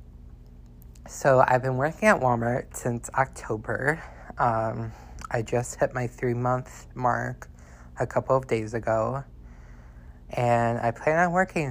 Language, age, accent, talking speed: English, 20-39, American, 135 wpm